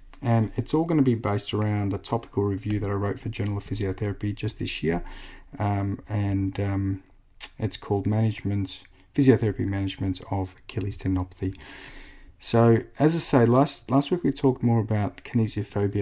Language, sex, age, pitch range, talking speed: English, male, 40-59, 100-125 Hz, 165 wpm